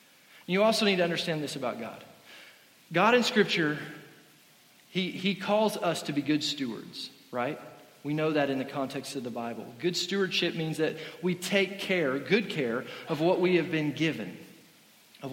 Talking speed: 175 wpm